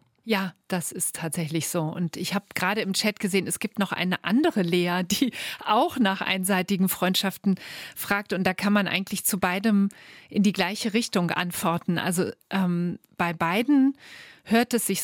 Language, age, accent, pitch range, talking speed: German, 40-59, German, 180-225 Hz, 170 wpm